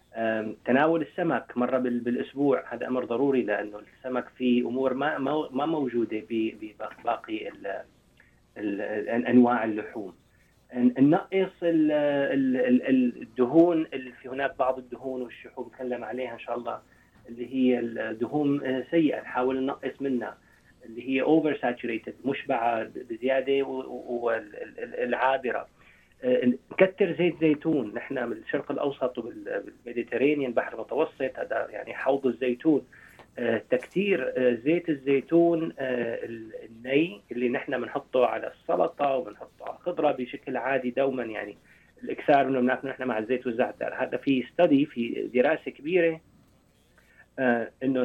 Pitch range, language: 120-150 Hz, Arabic